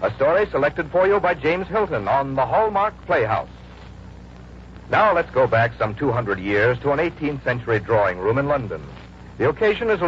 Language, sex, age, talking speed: English, male, 60-79, 185 wpm